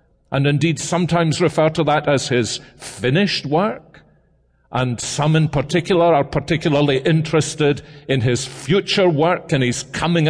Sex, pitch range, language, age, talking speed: male, 125-170 Hz, English, 50-69, 140 wpm